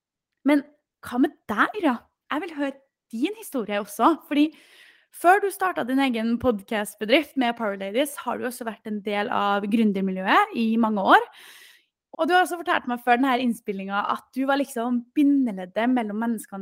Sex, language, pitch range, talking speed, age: female, English, 225-280 Hz, 175 wpm, 20-39